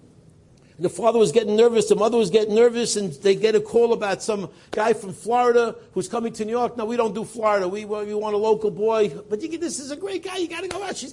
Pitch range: 200-240 Hz